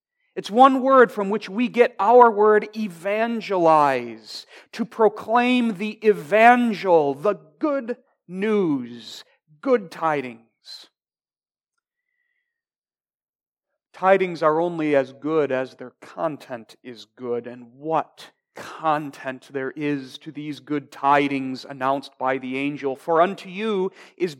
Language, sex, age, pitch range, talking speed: English, male, 40-59, 140-210 Hz, 115 wpm